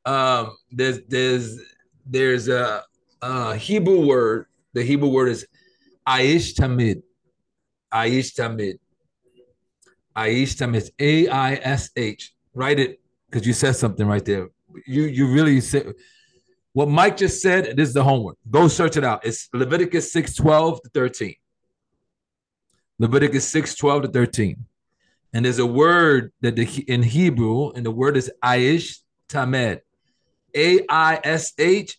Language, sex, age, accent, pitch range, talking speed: English, male, 40-59, American, 125-160 Hz, 135 wpm